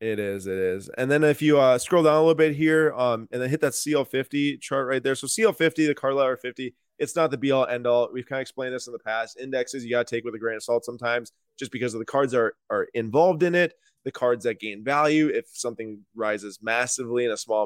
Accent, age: American, 20-39